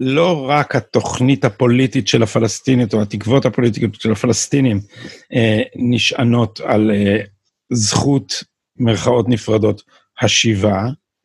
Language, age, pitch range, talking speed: Hebrew, 50-69, 125-175 Hz, 90 wpm